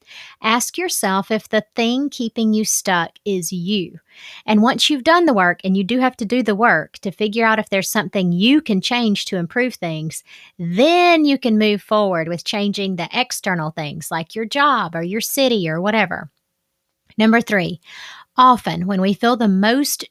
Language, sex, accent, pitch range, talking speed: English, female, American, 200-260 Hz, 185 wpm